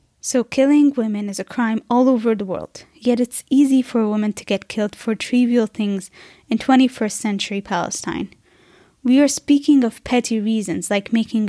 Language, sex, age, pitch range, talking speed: English, female, 20-39, 200-245 Hz, 180 wpm